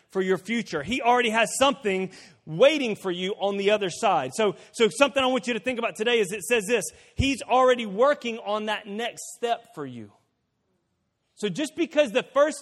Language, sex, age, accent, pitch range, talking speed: English, male, 30-49, American, 150-210 Hz, 200 wpm